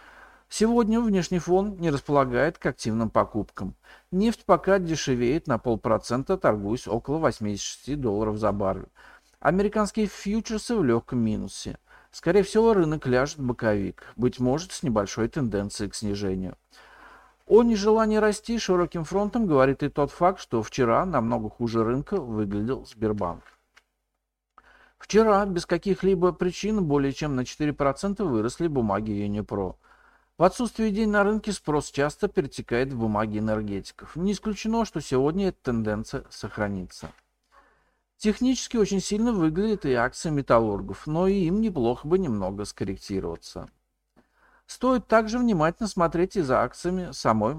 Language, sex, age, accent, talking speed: Russian, male, 50-69, native, 130 wpm